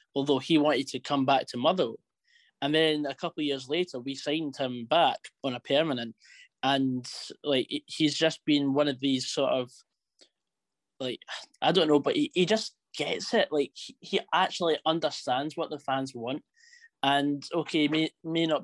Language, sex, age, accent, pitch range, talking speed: English, male, 10-29, British, 130-155 Hz, 180 wpm